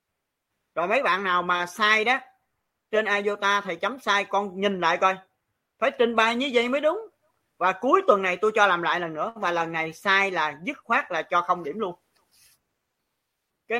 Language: Vietnamese